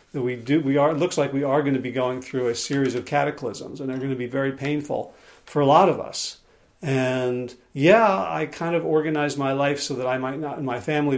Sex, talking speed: male, 240 wpm